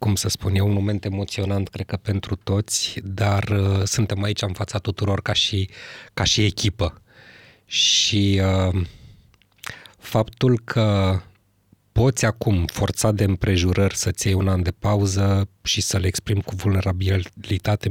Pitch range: 95-115 Hz